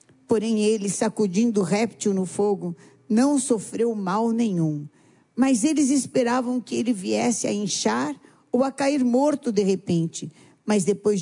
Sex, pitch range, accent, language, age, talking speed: female, 205-265 Hz, Brazilian, Portuguese, 50-69, 140 wpm